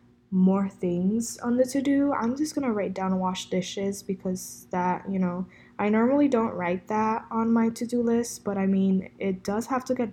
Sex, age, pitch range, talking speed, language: female, 10-29, 185-230 Hz, 195 wpm, English